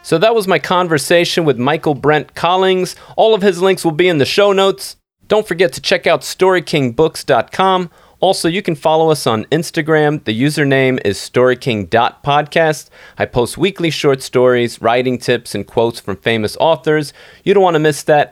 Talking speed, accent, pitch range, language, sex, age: 175 wpm, American, 120-165 Hz, English, male, 30-49